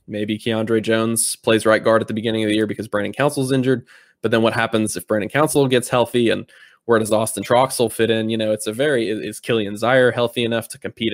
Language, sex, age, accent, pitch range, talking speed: English, male, 10-29, American, 105-120 Hz, 235 wpm